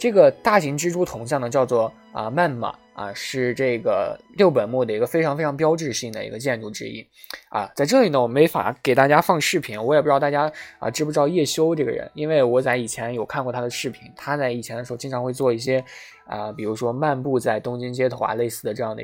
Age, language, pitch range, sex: 20-39, Chinese, 120-155 Hz, male